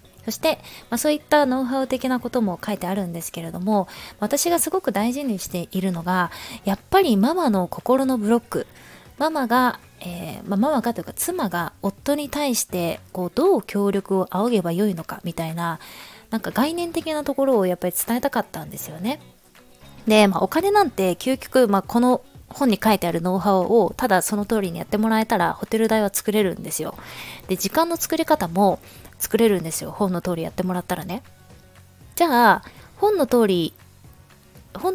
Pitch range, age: 180-265 Hz, 20-39